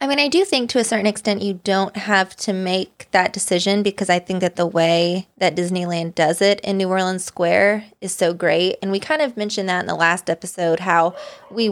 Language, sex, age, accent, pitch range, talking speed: English, female, 20-39, American, 180-215 Hz, 230 wpm